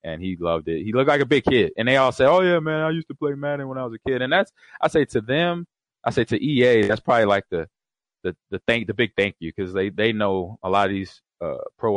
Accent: American